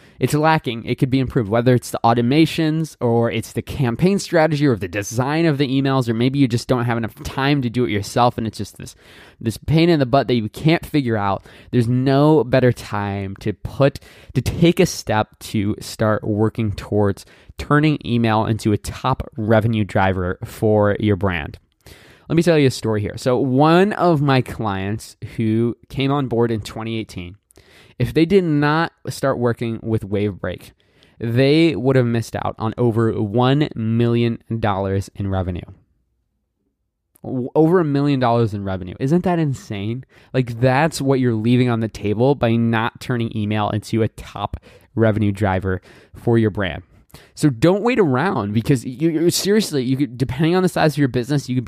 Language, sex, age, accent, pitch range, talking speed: English, male, 20-39, American, 105-135 Hz, 180 wpm